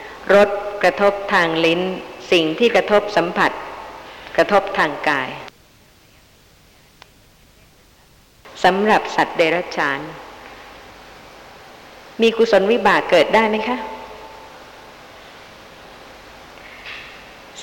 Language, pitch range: Thai, 180-220 Hz